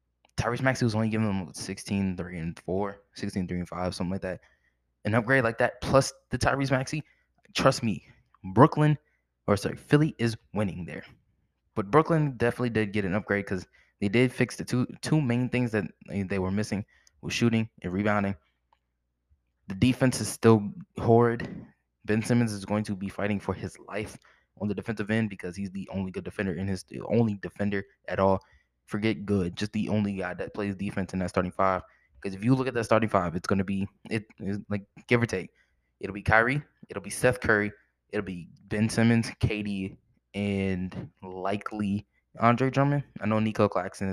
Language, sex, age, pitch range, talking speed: English, male, 20-39, 95-115 Hz, 190 wpm